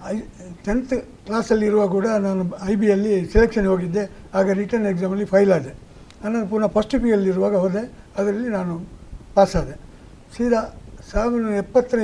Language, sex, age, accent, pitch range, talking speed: Kannada, male, 60-79, native, 190-220 Hz, 130 wpm